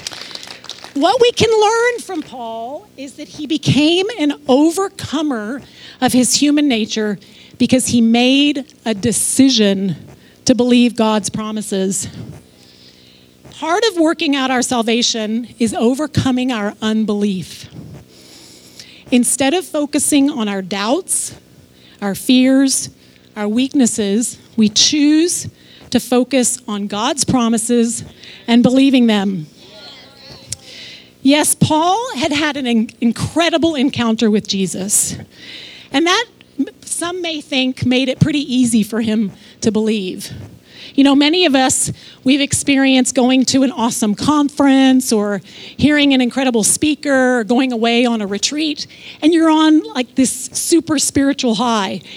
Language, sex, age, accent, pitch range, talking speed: English, female, 40-59, American, 225-290 Hz, 125 wpm